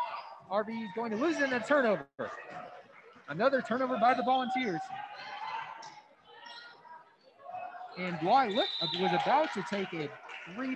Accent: American